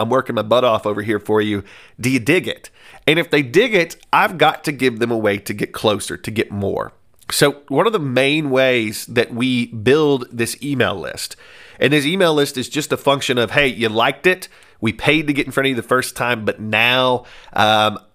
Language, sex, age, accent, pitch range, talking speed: English, male, 30-49, American, 115-145 Hz, 230 wpm